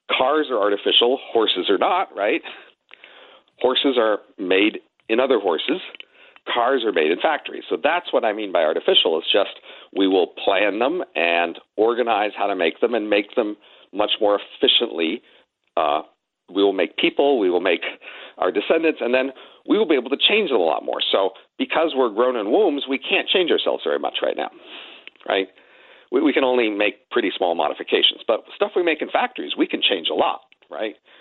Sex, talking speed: male, 190 wpm